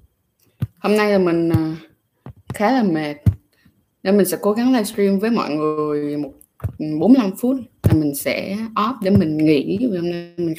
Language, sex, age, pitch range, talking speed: Vietnamese, female, 20-39, 165-215 Hz, 165 wpm